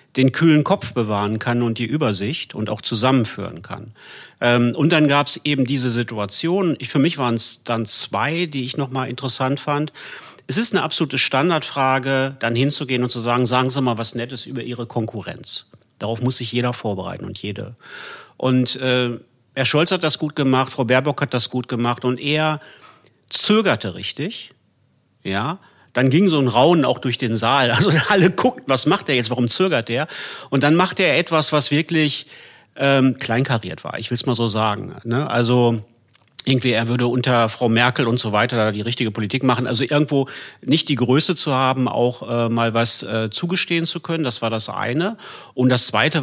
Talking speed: 190 wpm